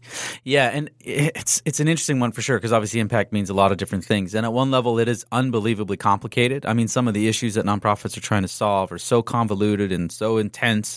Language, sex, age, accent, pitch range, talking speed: English, male, 30-49, American, 105-125 Hz, 240 wpm